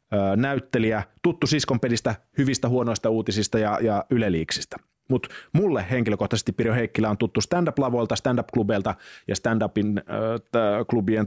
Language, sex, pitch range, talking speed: Finnish, male, 100-130 Hz, 120 wpm